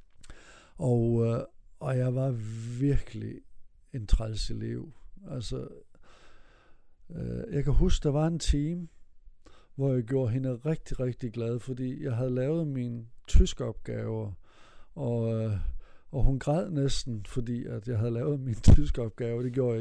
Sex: male